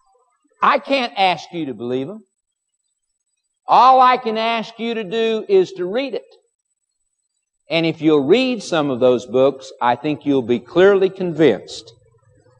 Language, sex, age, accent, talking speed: English, male, 50-69, American, 155 wpm